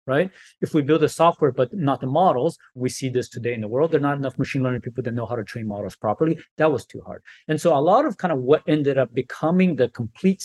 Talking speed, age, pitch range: 275 wpm, 30-49, 125-155 Hz